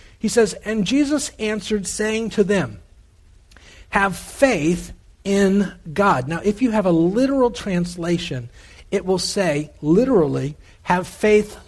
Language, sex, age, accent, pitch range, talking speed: English, male, 50-69, American, 135-200 Hz, 130 wpm